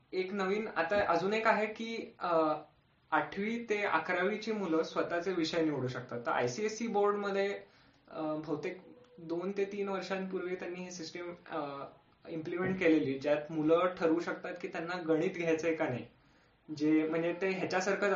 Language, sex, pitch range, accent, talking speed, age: Marathi, male, 150-185 Hz, native, 140 wpm, 20-39